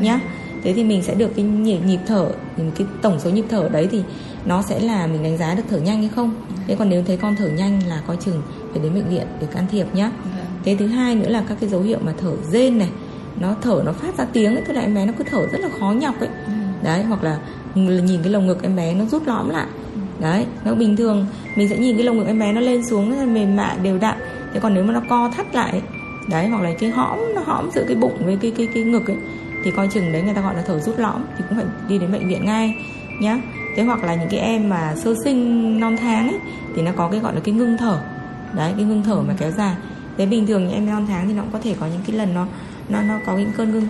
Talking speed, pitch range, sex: 280 wpm, 185-225 Hz, female